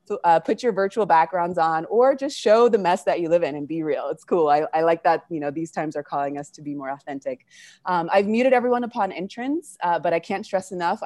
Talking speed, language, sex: 255 wpm, English, female